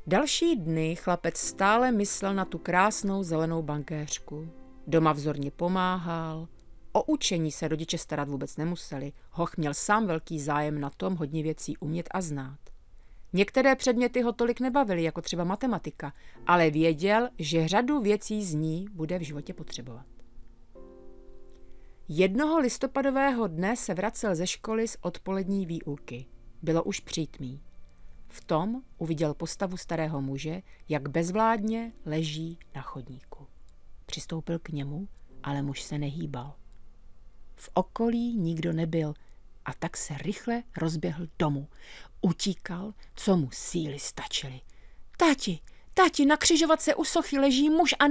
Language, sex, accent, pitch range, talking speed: Czech, female, native, 150-205 Hz, 130 wpm